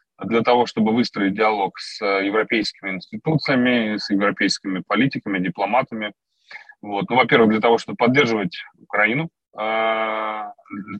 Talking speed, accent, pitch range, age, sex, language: 110 wpm, native, 100-125 Hz, 20-39, male, Russian